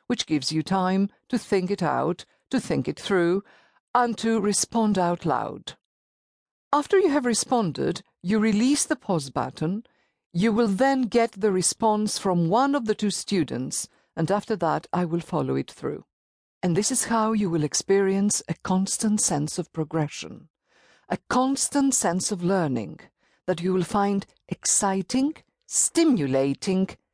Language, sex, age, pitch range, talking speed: English, female, 50-69, 170-235 Hz, 155 wpm